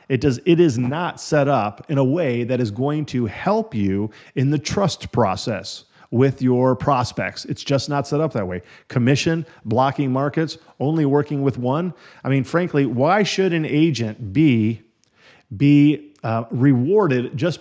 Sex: male